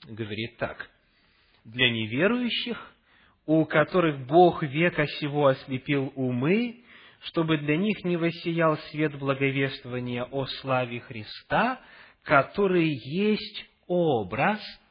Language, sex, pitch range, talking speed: English, male, 135-200 Hz, 95 wpm